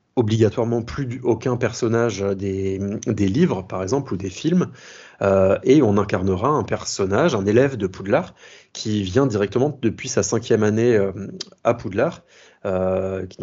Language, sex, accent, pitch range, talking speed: French, male, French, 95-115 Hz, 145 wpm